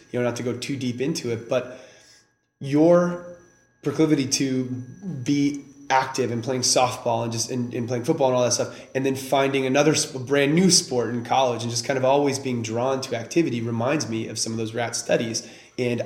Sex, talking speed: male, 200 wpm